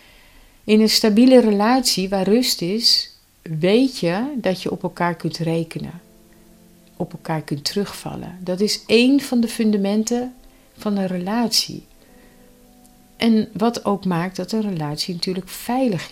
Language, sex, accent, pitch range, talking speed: Dutch, female, Dutch, 155-210 Hz, 140 wpm